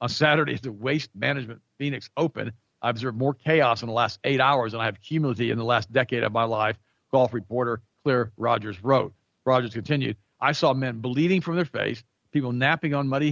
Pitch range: 110-135 Hz